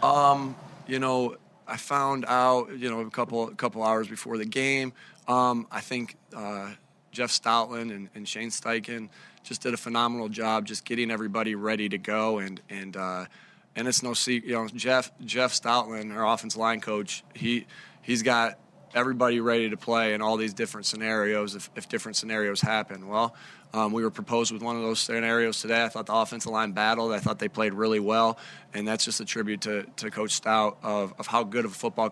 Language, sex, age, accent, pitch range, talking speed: English, male, 20-39, American, 110-120 Hz, 205 wpm